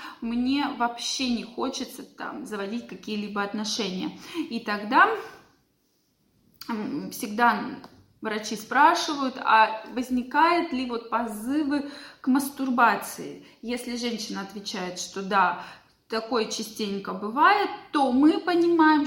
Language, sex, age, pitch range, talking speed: Russian, female, 20-39, 215-295 Hz, 100 wpm